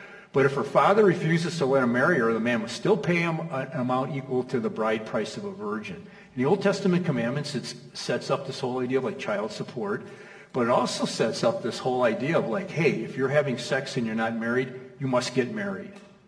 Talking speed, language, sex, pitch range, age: 235 wpm, English, male, 145-200 Hz, 50-69